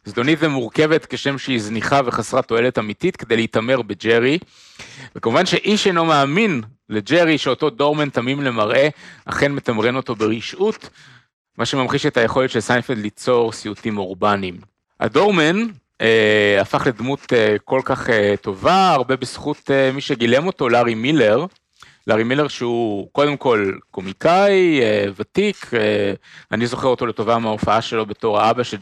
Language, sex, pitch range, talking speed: Hebrew, male, 110-145 Hz, 135 wpm